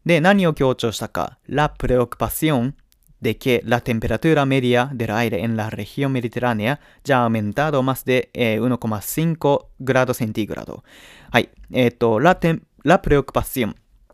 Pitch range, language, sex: 115-145 Hz, Japanese, male